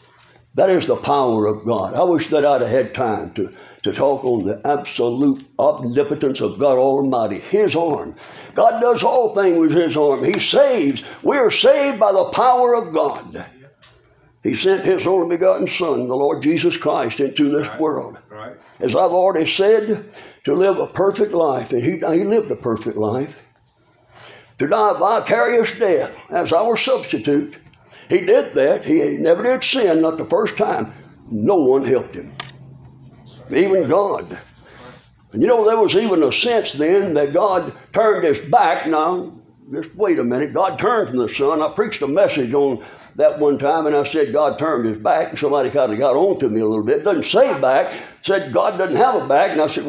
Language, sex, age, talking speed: English, male, 60-79, 190 wpm